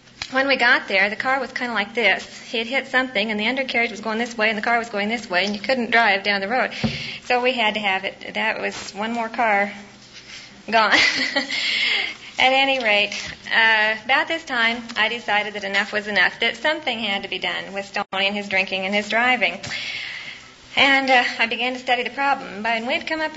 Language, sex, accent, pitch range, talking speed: English, female, American, 205-260 Hz, 230 wpm